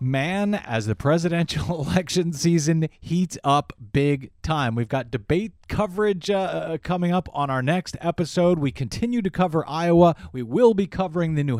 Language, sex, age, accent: English, male, 40-59, American